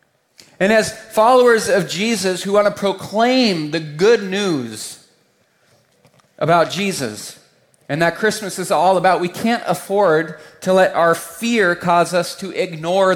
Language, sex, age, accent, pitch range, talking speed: English, male, 30-49, American, 140-200 Hz, 140 wpm